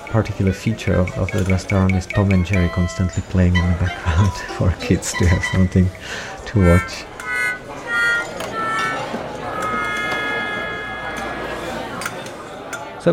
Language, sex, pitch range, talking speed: English, male, 95-125 Hz, 105 wpm